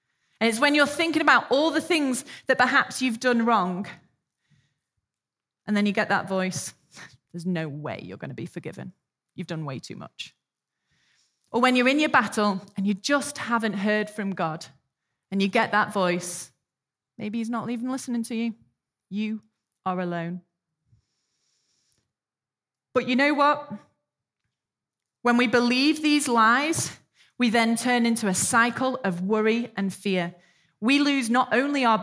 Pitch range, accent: 190-245 Hz, British